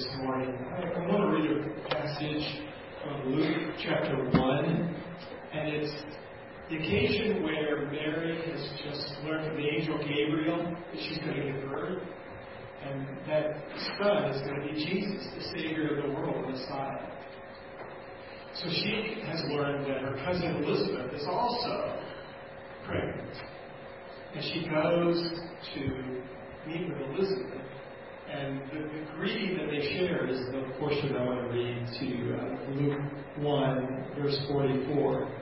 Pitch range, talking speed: 135-165 Hz, 140 wpm